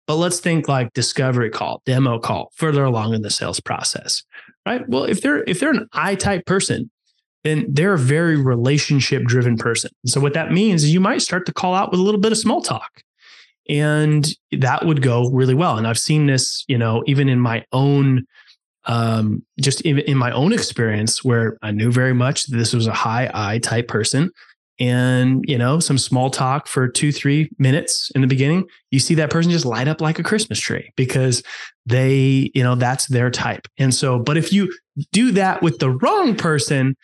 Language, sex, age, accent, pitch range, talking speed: English, male, 20-39, American, 125-155 Hz, 205 wpm